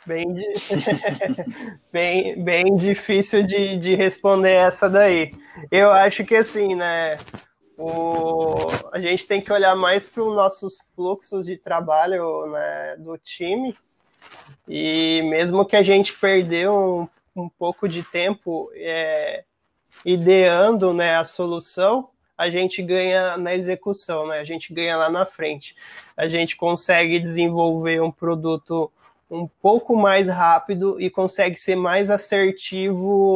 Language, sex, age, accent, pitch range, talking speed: Portuguese, male, 20-39, Brazilian, 170-195 Hz, 125 wpm